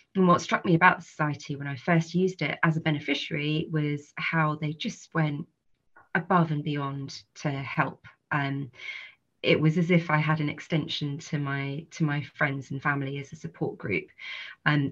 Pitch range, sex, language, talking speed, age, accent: 140-160 Hz, female, English, 185 wpm, 30-49, British